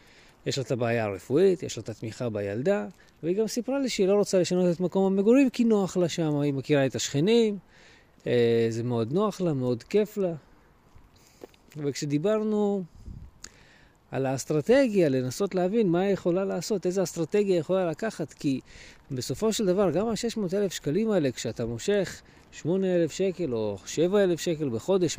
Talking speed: 155 wpm